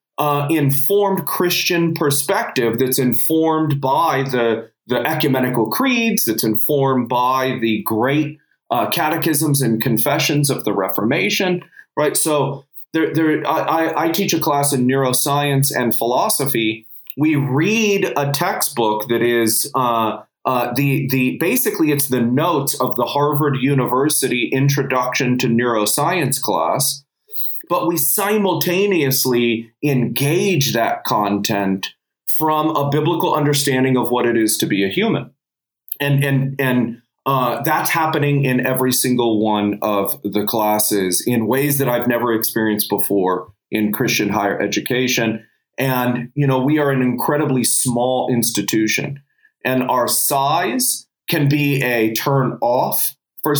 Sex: male